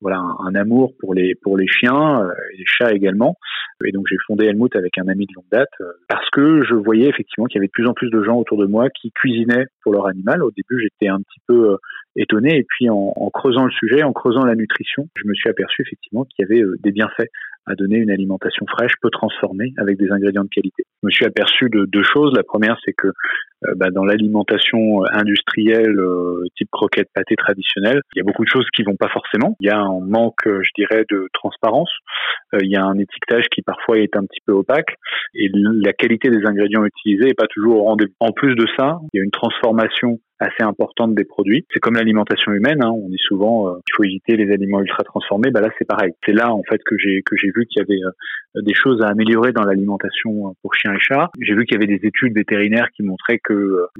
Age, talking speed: 30-49, 250 wpm